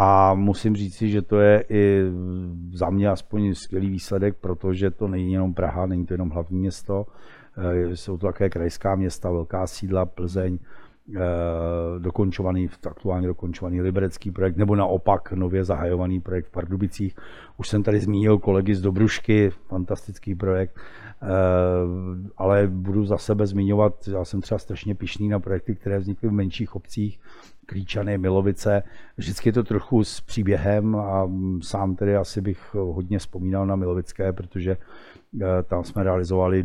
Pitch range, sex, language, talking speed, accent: 90-105 Hz, male, Czech, 145 wpm, native